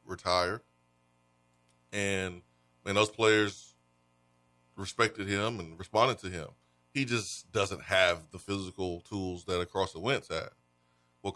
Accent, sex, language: American, male, English